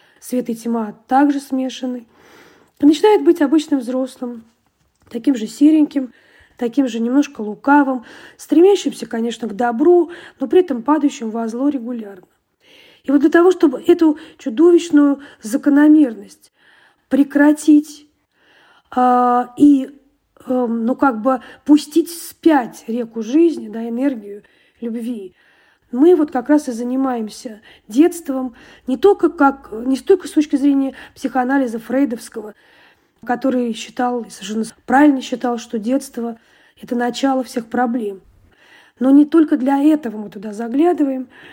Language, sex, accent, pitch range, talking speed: Russian, female, native, 235-290 Hz, 120 wpm